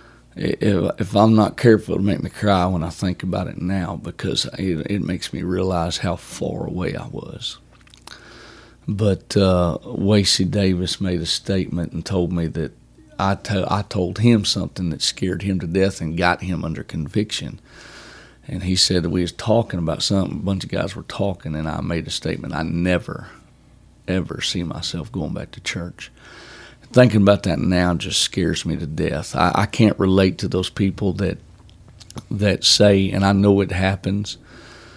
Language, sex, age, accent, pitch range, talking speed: English, male, 40-59, American, 90-100 Hz, 180 wpm